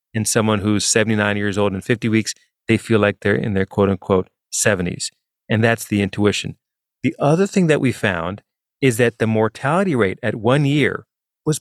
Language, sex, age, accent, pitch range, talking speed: English, male, 30-49, American, 105-130 Hz, 185 wpm